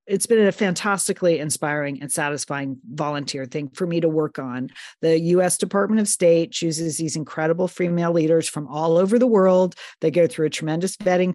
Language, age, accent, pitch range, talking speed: English, 40-59, American, 155-185 Hz, 185 wpm